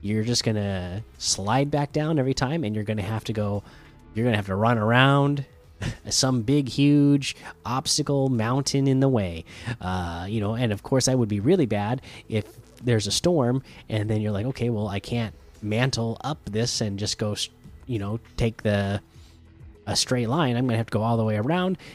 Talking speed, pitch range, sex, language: 200 wpm, 105-140 Hz, male, English